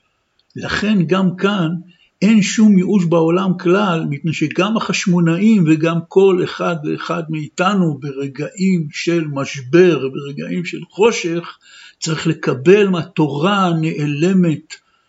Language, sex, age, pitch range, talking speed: Hebrew, male, 60-79, 150-190 Hz, 105 wpm